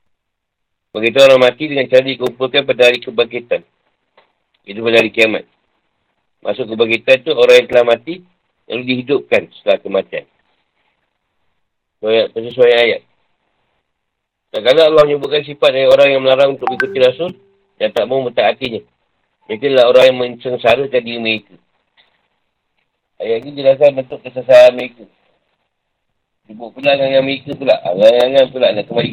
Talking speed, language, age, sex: 135 wpm, Malay, 40-59, male